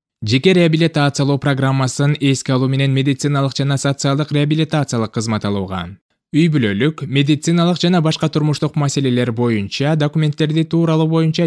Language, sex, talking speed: Russian, male, 115 wpm